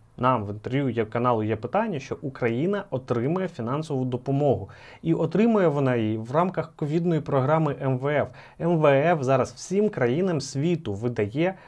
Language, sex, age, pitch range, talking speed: Ukrainian, male, 30-49, 125-170 Hz, 135 wpm